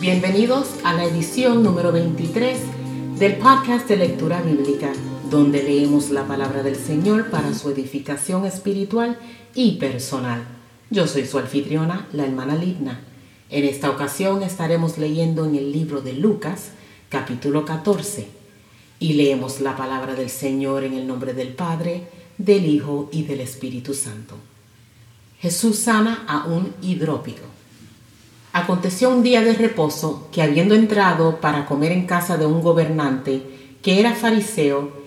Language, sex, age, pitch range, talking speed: Spanish, female, 40-59, 135-200 Hz, 140 wpm